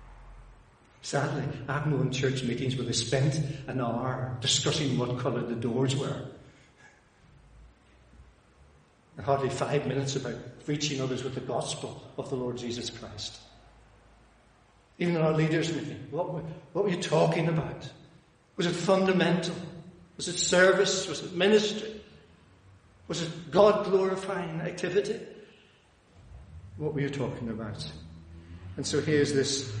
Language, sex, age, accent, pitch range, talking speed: English, male, 60-79, British, 115-150 Hz, 130 wpm